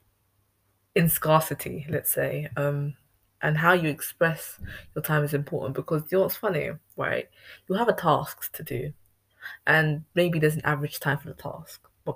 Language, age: English, 20-39